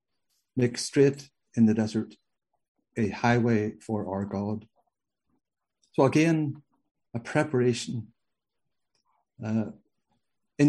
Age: 60-79